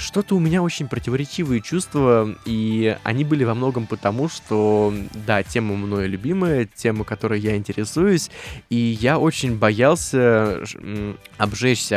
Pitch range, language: 105-125 Hz, Russian